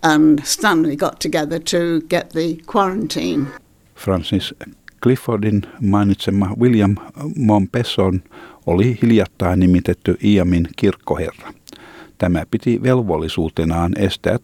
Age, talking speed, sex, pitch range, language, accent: 50-69, 60 wpm, male, 90-115 Hz, Finnish, native